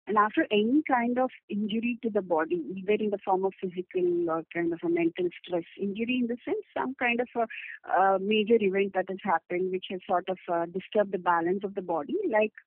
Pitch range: 185-245 Hz